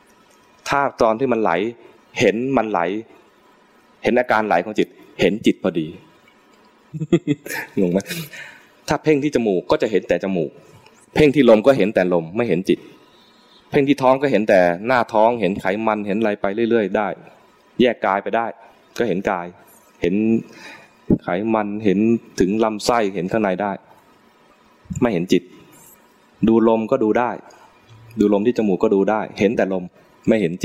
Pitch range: 95-115 Hz